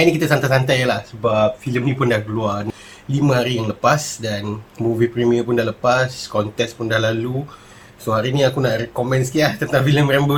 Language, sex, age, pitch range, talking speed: Malay, male, 30-49, 115-145 Hz, 210 wpm